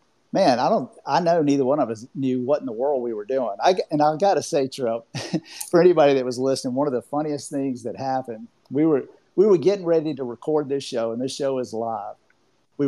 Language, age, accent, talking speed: English, 50-69, American, 240 wpm